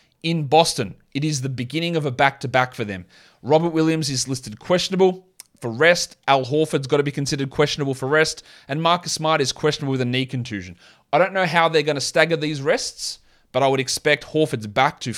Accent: Australian